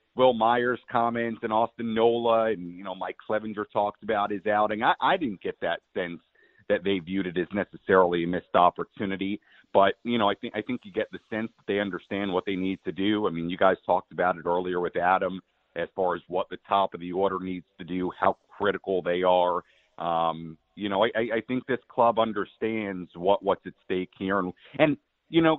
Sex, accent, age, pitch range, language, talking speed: male, American, 40-59, 90-115 Hz, English, 220 wpm